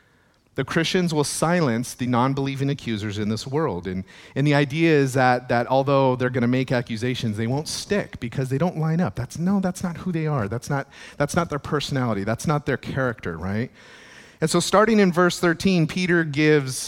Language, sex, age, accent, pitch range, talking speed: English, male, 40-59, American, 115-155 Hz, 205 wpm